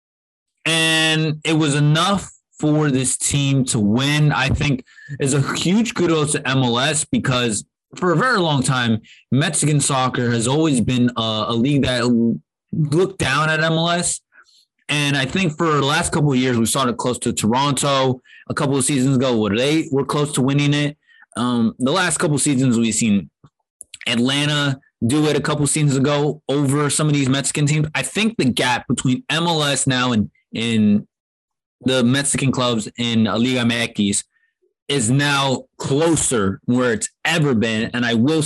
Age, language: 20-39, English